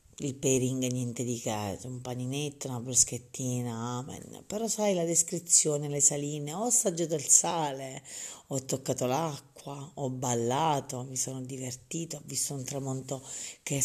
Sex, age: female, 40-59